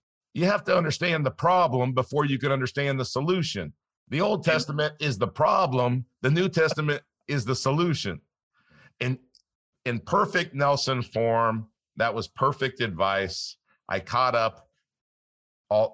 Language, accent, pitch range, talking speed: English, American, 100-130 Hz, 140 wpm